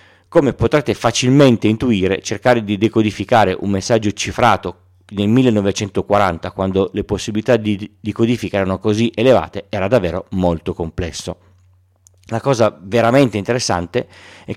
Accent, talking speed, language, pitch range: native, 120 wpm, Italian, 95-120 Hz